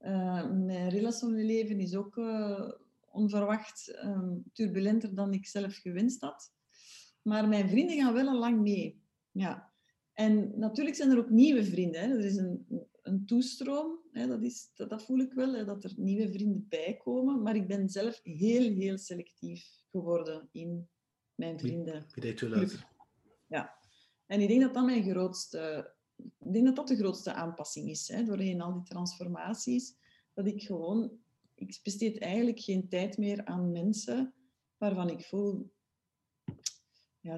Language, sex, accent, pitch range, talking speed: English, female, Dutch, 185-230 Hz, 165 wpm